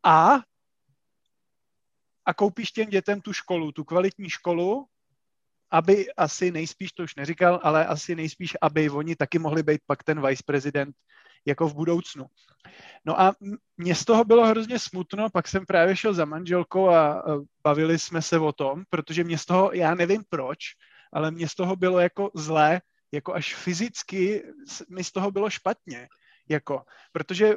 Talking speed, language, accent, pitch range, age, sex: 160 wpm, English, Czech, 155-180 Hz, 30-49, male